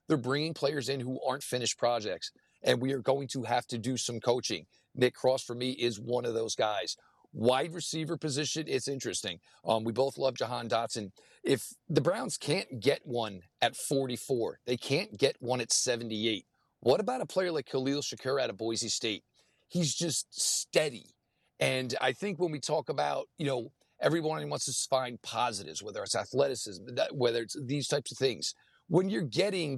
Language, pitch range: English, 115-145 Hz